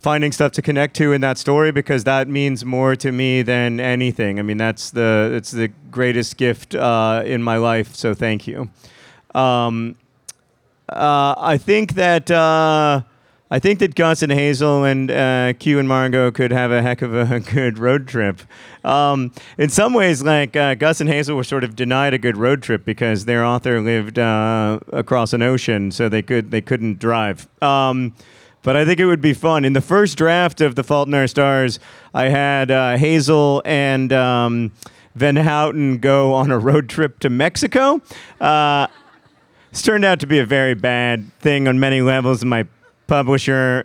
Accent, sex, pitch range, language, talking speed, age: American, male, 120-145 Hz, English, 185 wpm, 40-59